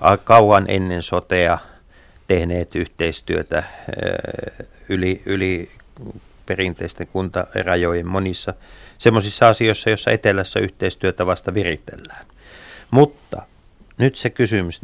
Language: Finnish